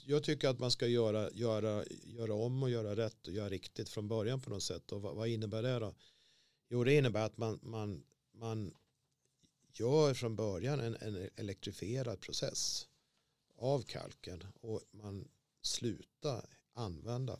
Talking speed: 150 wpm